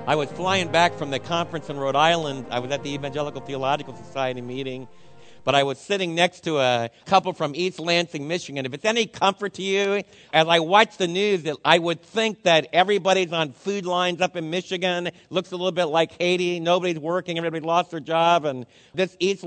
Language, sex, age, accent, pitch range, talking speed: English, male, 50-69, American, 150-185 Hz, 205 wpm